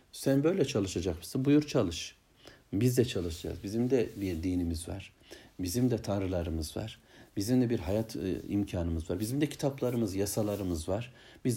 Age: 60-79